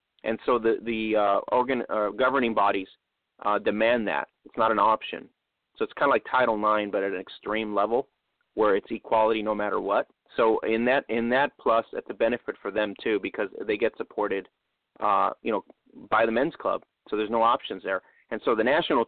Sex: male